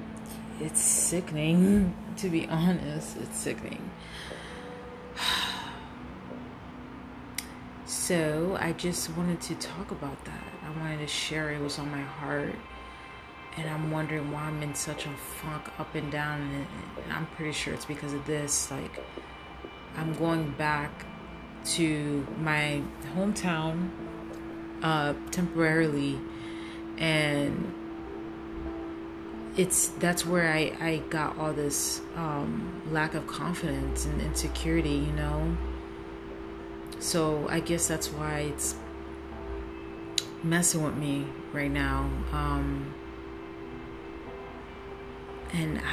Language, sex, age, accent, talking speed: English, female, 30-49, American, 110 wpm